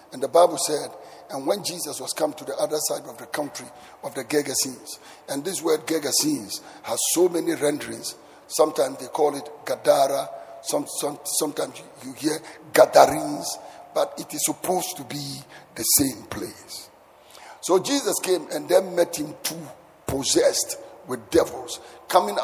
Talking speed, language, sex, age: 150 wpm, English, male, 50-69